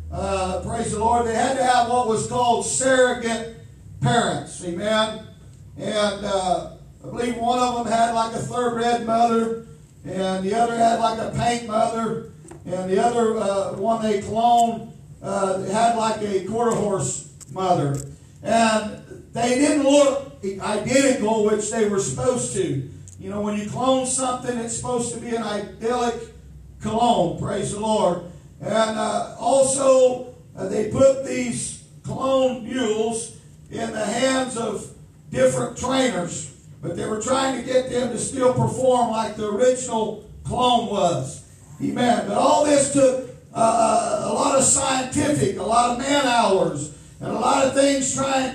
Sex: male